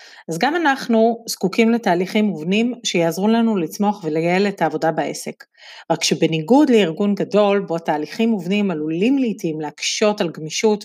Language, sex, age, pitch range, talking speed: Hebrew, female, 40-59, 175-230 Hz, 140 wpm